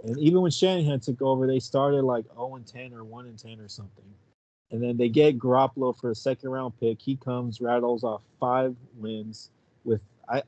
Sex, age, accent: male, 30-49, American